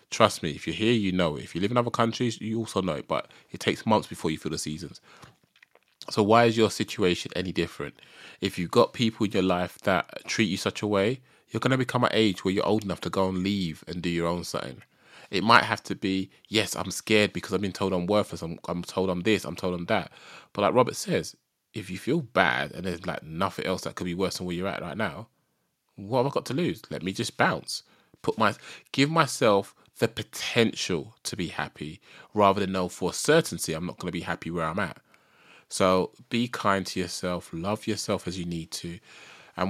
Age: 20-39